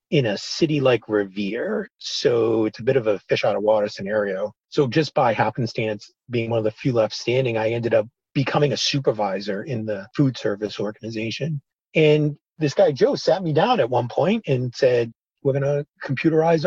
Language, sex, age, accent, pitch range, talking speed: English, male, 30-49, American, 110-150 Hz, 190 wpm